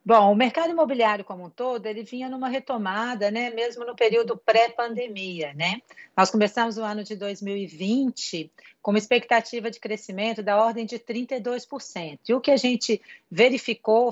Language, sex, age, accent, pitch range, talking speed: Portuguese, female, 40-59, Brazilian, 200-245 Hz, 160 wpm